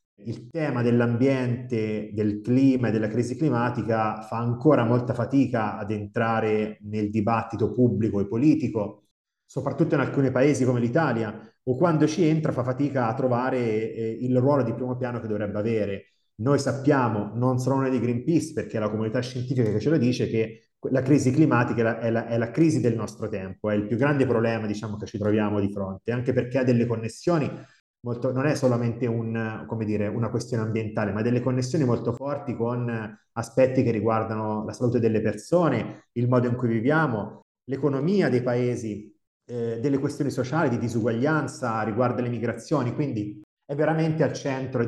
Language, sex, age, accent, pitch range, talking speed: Italian, male, 30-49, native, 110-130 Hz, 175 wpm